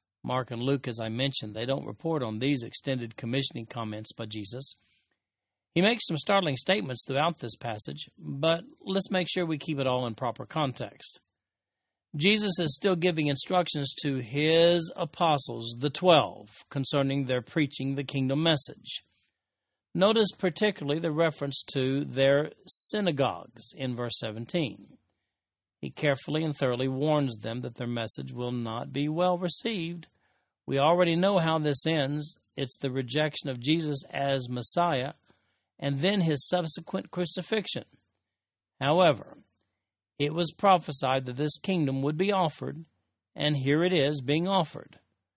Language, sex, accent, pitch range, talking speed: English, male, American, 125-165 Hz, 145 wpm